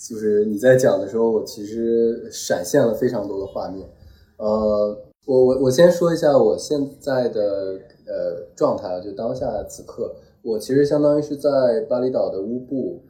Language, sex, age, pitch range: Chinese, male, 20-39, 105-145 Hz